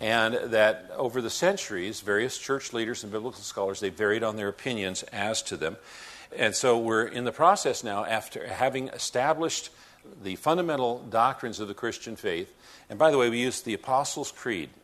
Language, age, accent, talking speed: English, 50-69, American, 180 wpm